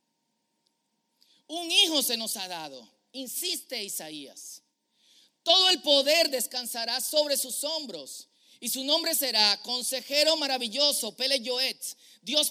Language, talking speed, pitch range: Spanish, 115 wpm, 235-290 Hz